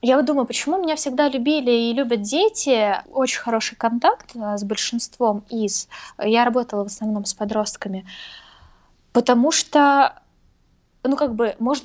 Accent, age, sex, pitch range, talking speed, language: native, 20-39, female, 230-290 Hz, 140 wpm, Russian